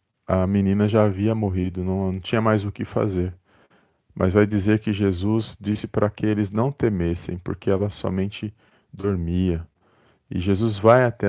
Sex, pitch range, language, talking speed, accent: male, 100-115 Hz, Portuguese, 165 wpm, Brazilian